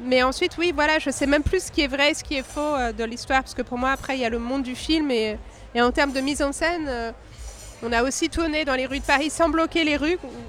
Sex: female